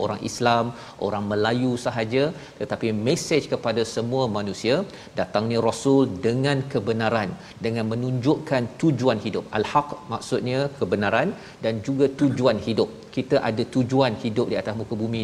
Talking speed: 130 wpm